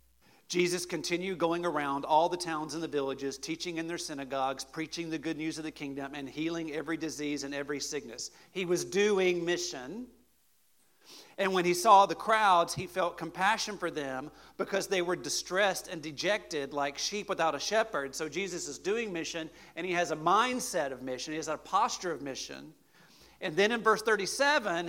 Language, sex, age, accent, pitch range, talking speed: English, male, 50-69, American, 165-215 Hz, 185 wpm